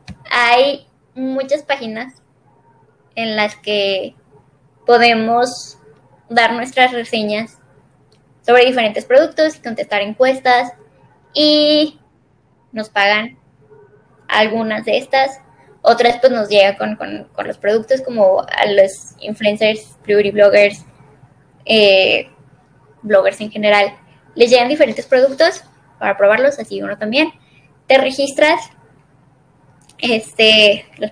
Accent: Mexican